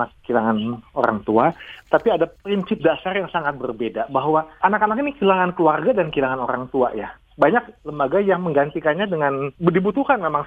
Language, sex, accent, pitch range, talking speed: Indonesian, male, native, 135-195 Hz, 155 wpm